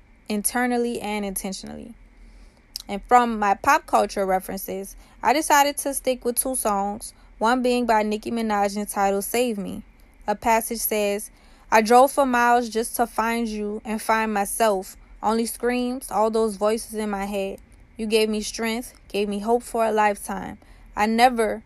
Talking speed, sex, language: 160 wpm, female, English